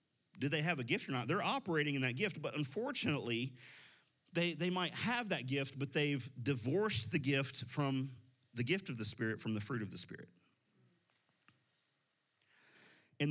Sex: male